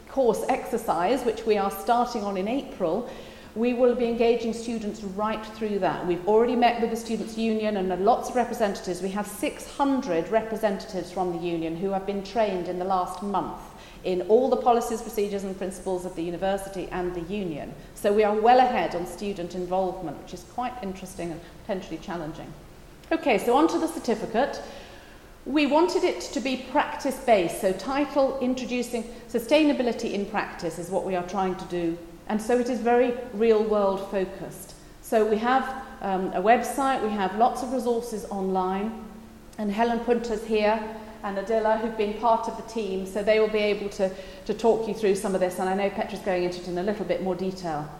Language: English